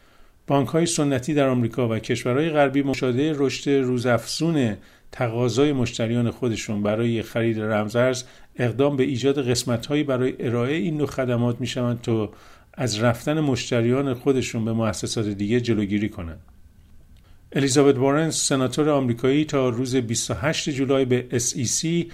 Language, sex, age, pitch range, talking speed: Persian, male, 50-69, 115-140 Hz, 125 wpm